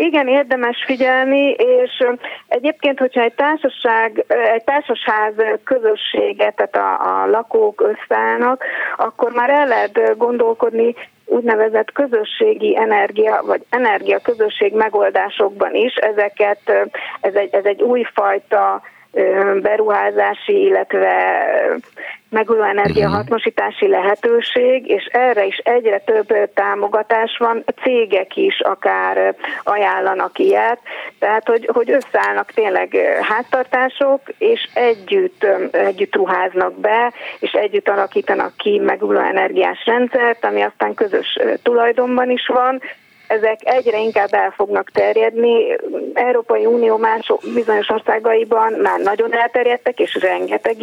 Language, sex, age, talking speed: Hungarian, female, 30-49, 110 wpm